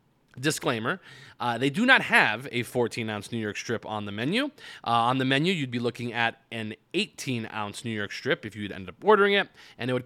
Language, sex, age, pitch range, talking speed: English, male, 30-49, 110-165 Hz, 225 wpm